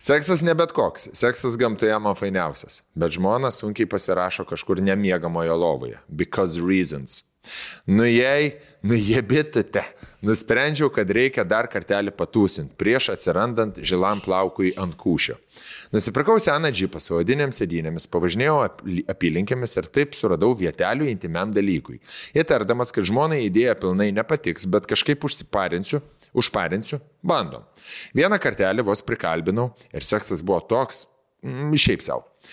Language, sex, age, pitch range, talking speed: English, male, 20-39, 95-145 Hz, 125 wpm